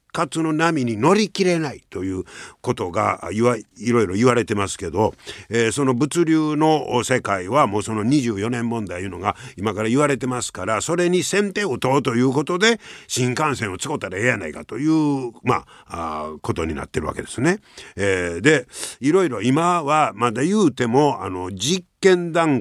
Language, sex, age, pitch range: Japanese, male, 50-69, 110-165 Hz